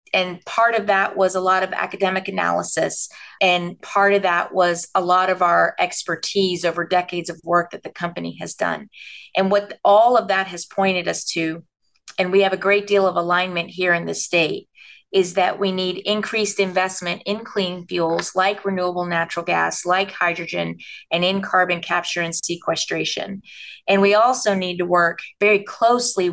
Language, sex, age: English, female, 30-49